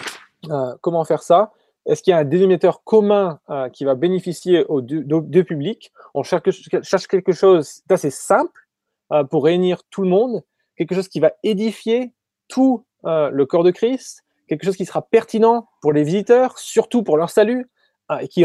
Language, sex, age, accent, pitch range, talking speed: French, male, 20-39, French, 150-200 Hz, 190 wpm